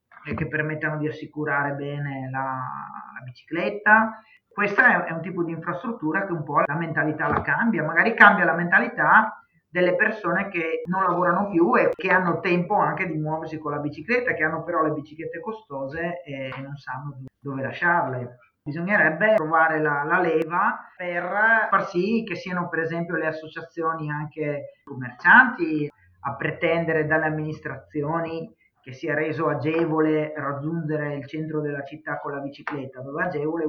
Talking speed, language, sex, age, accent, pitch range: 155 wpm, Italian, male, 30-49, native, 145-175 Hz